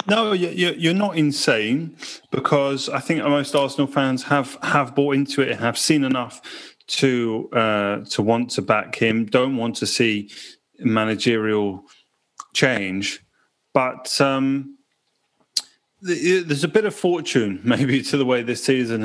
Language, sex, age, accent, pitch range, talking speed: English, male, 30-49, British, 115-140 Hz, 145 wpm